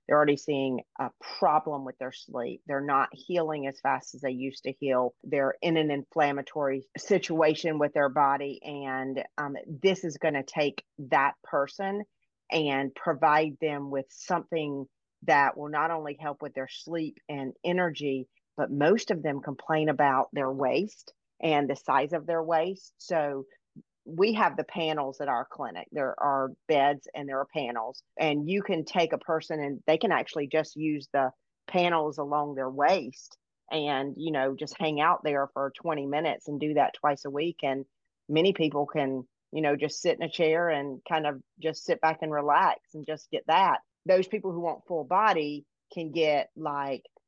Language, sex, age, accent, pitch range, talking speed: English, female, 40-59, American, 140-160 Hz, 185 wpm